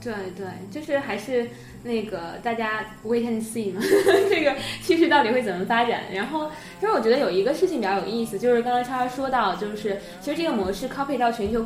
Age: 20-39